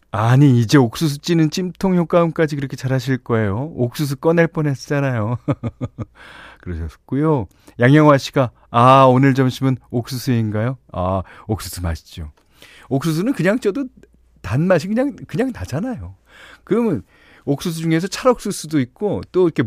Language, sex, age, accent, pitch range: Korean, male, 40-59, native, 95-160 Hz